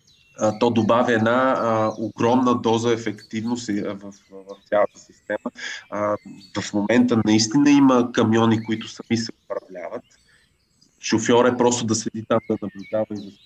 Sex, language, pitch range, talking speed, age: male, Bulgarian, 105-125 Hz, 145 wpm, 20-39